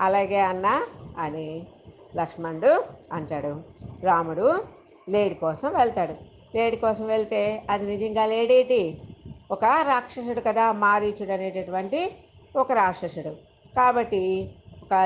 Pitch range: 180-225 Hz